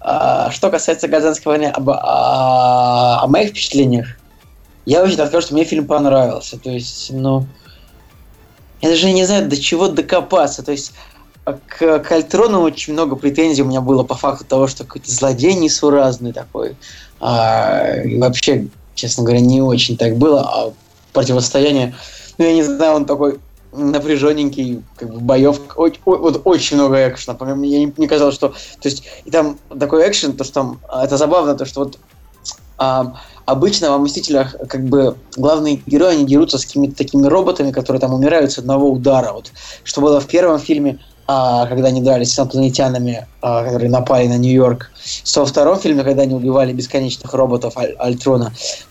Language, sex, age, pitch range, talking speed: Russian, male, 20-39, 125-145 Hz, 165 wpm